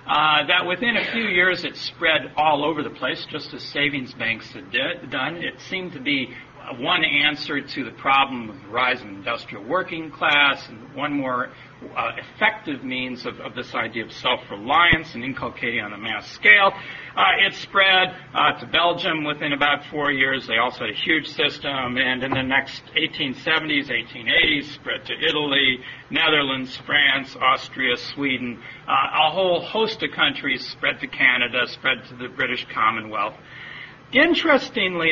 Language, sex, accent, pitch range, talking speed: English, male, American, 135-195 Hz, 165 wpm